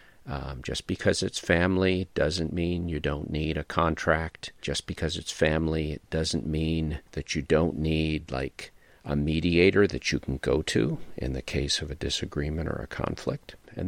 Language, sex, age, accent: English, male, 50-69, American